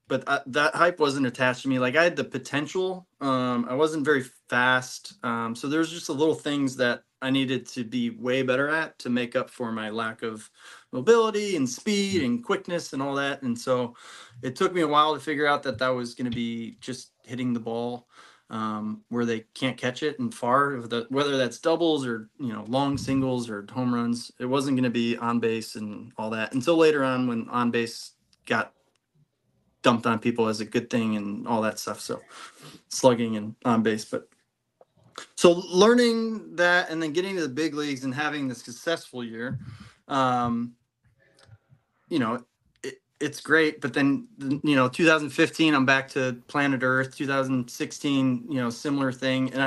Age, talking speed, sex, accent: 20-39, 190 wpm, male, American